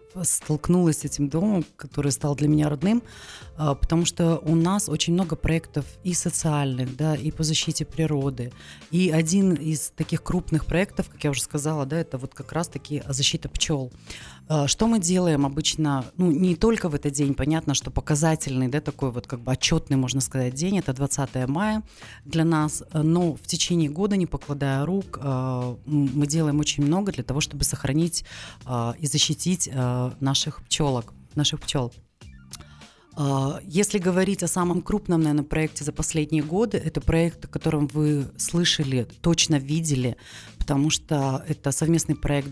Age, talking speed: 30-49, 155 wpm